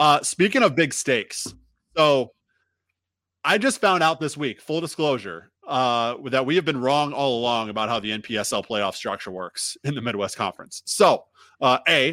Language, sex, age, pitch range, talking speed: English, male, 20-39, 115-160 Hz, 180 wpm